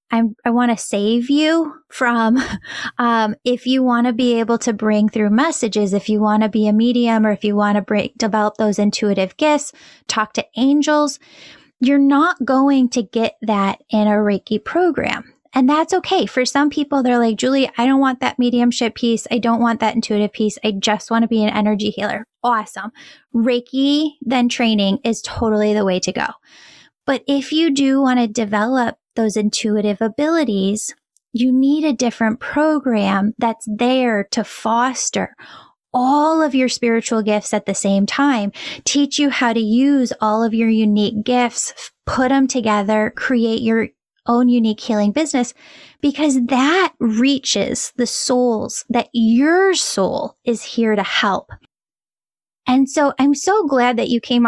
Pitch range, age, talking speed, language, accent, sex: 220-275 Hz, 10-29, 170 wpm, English, American, female